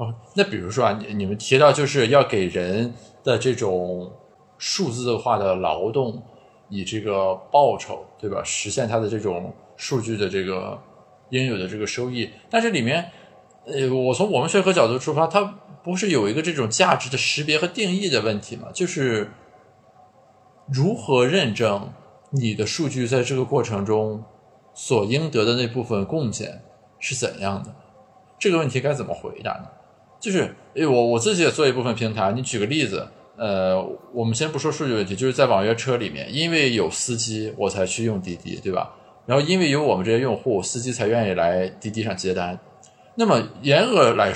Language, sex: Chinese, male